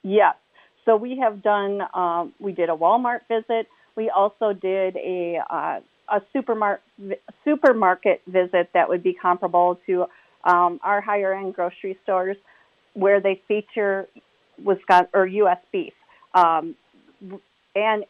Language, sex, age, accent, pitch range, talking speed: English, female, 40-59, American, 185-225 Hz, 135 wpm